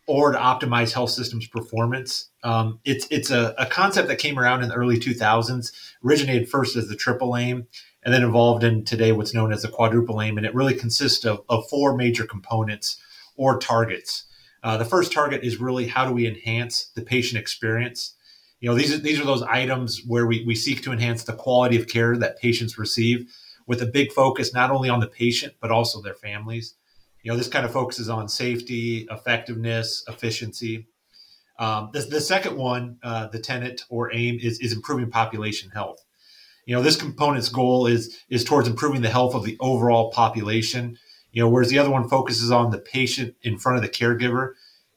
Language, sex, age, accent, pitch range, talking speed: English, male, 30-49, American, 115-125 Hz, 200 wpm